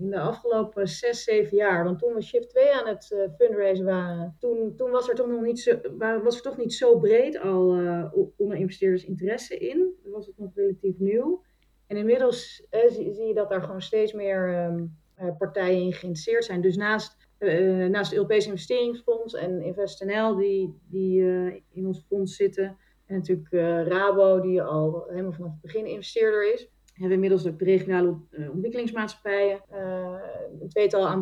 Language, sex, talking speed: Dutch, female, 185 wpm